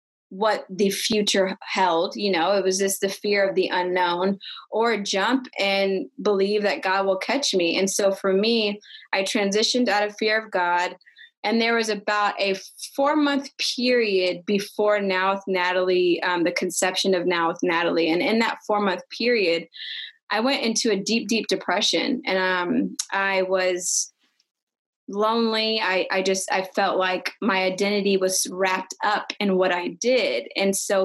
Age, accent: 20-39, American